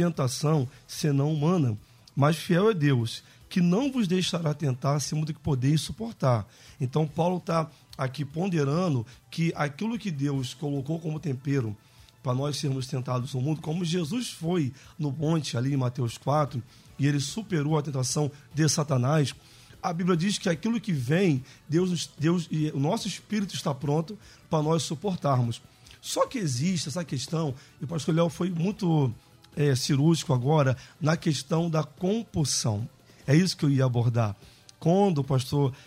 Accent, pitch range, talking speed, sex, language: Brazilian, 130-165 Hz, 160 wpm, male, Portuguese